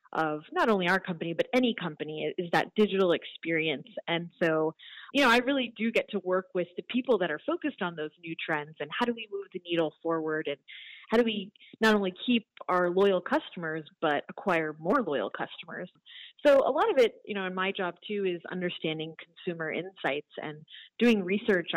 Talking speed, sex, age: 200 wpm, female, 30-49